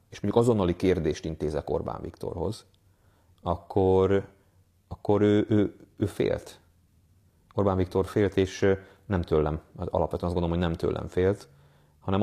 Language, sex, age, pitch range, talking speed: Hungarian, male, 30-49, 90-110 Hz, 130 wpm